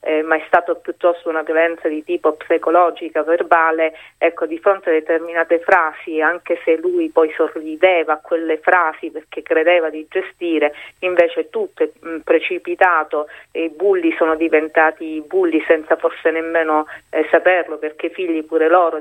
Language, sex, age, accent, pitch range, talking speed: Italian, female, 40-59, native, 160-180 Hz, 155 wpm